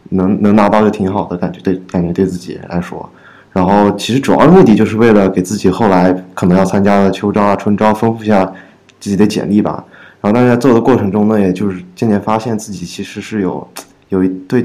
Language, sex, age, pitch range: Chinese, male, 20-39, 95-105 Hz